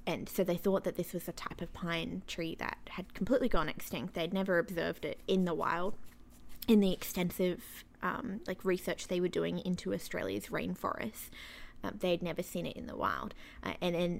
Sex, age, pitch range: female, 20-39, 175-195 Hz